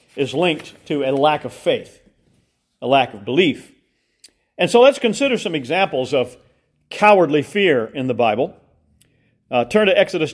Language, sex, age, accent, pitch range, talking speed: English, male, 50-69, American, 130-170 Hz, 155 wpm